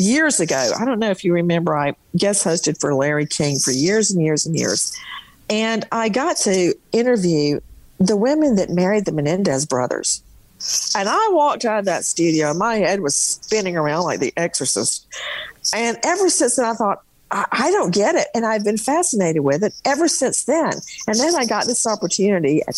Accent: American